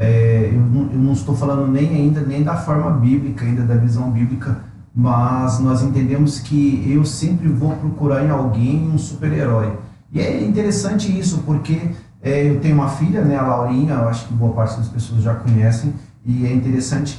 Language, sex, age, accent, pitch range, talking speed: Portuguese, male, 40-59, Brazilian, 125-155 Hz, 190 wpm